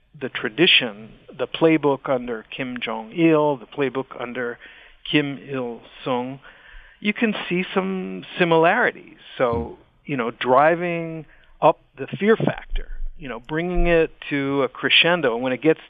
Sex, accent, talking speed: male, American, 135 wpm